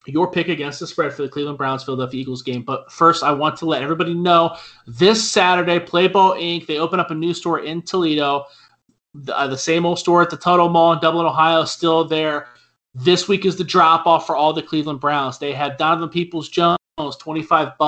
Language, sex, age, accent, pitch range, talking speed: English, male, 30-49, American, 145-175 Hz, 205 wpm